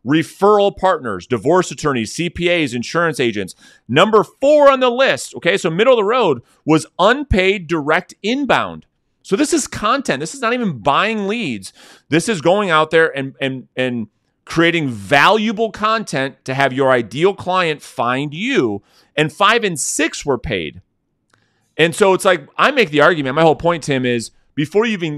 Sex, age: male, 30-49